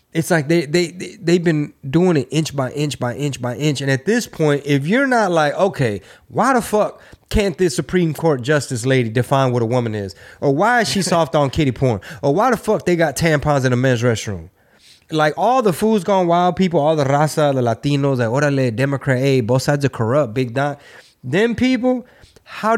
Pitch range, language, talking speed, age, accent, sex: 125-165 Hz, English, 225 wpm, 20-39, American, male